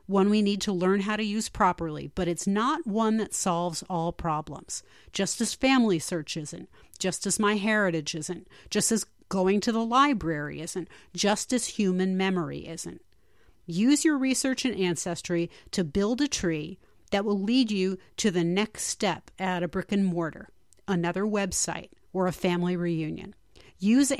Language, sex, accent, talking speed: English, female, American, 170 wpm